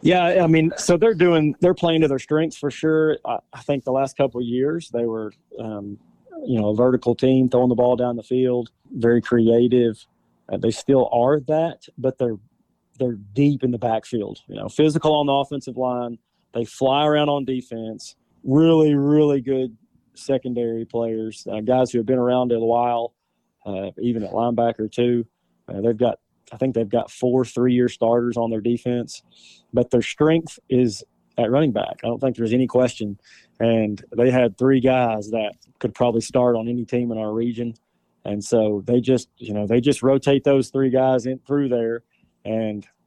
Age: 30-49